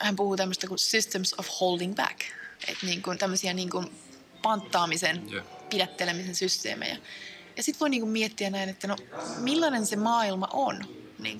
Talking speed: 160 wpm